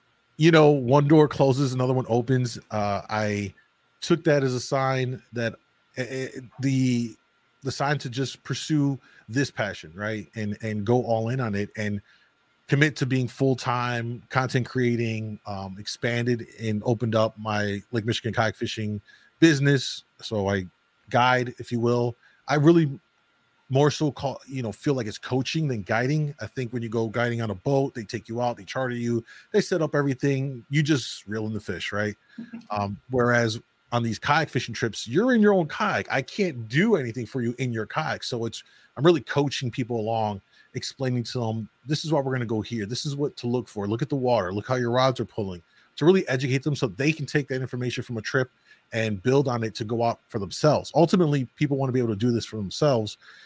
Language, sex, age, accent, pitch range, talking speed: English, male, 30-49, American, 110-140 Hz, 205 wpm